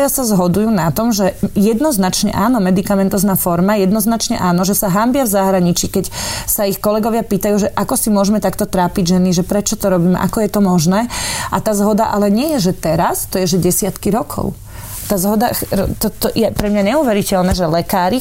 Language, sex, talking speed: Slovak, female, 190 wpm